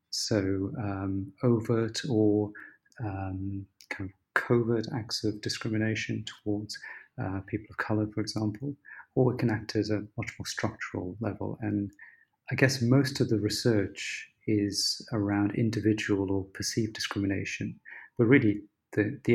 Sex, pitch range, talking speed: male, 105-125 Hz, 140 wpm